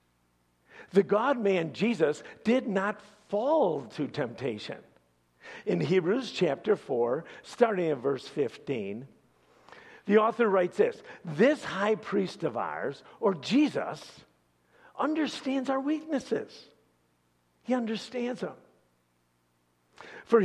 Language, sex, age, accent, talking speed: English, male, 50-69, American, 100 wpm